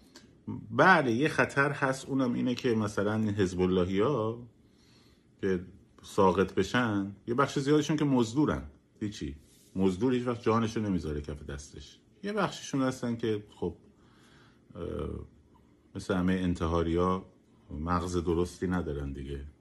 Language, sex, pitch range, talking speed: Persian, male, 80-110 Hz, 120 wpm